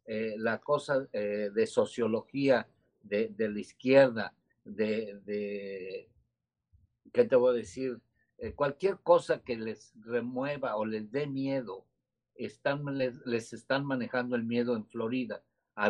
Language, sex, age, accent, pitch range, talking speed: Spanish, male, 50-69, Mexican, 120-150 Hz, 140 wpm